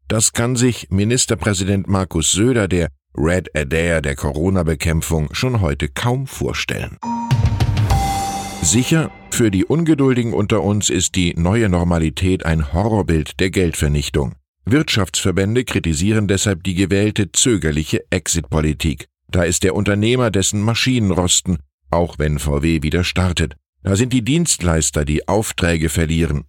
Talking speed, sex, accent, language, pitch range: 125 wpm, male, German, German, 85-115 Hz